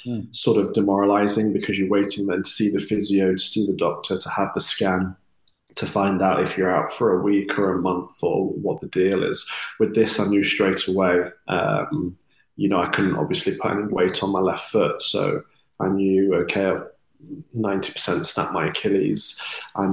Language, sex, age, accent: English, male, 20-39, British